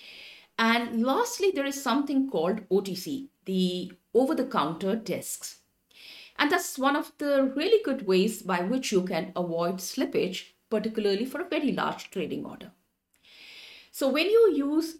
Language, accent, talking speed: English, Indian, 140 wpm